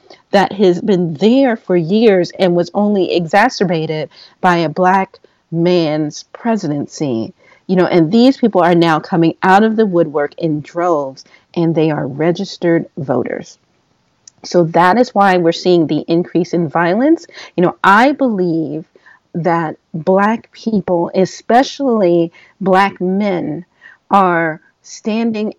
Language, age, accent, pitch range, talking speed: English, 40-59, American, 165-205 Hz, 130 wpm